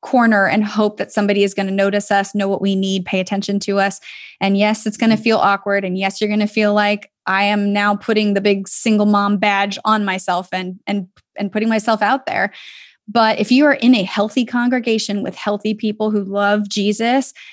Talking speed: 220 wpm